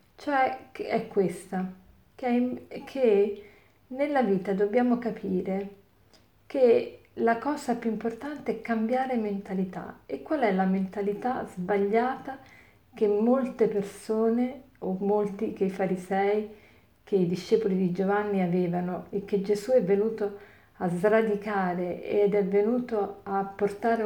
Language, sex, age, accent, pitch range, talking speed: Italian, female, 50-69, native, 190-225 Hz, 120 wpm